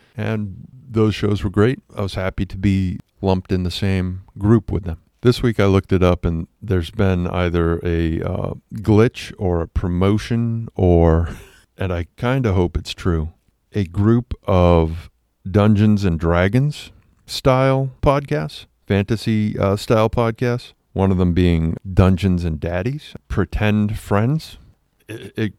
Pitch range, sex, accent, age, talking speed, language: 85-105 Hz, male, American, 50-69, 150 wpm, English